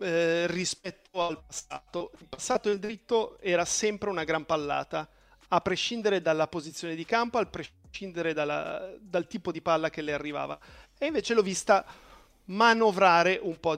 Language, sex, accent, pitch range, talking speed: Italian, male, native, 165-215 Hz, 155 wpm